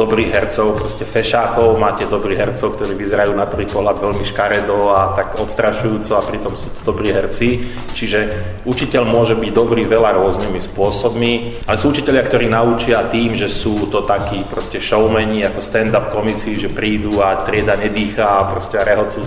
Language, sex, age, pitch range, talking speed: Slovak, male, 30-49, 100-115 Hz, 155 wpm